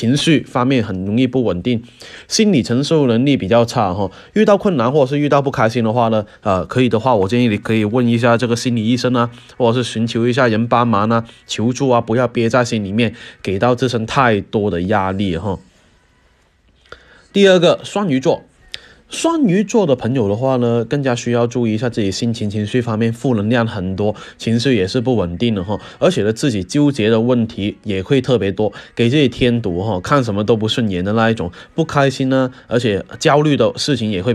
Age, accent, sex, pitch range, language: 20-39, native, male, 105-135 Hz, Chinese